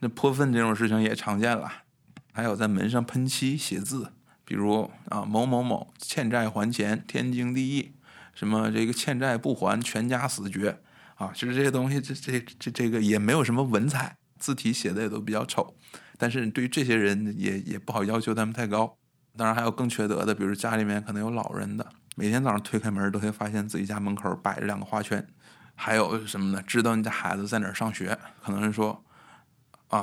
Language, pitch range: Chinese, 105-125 Hz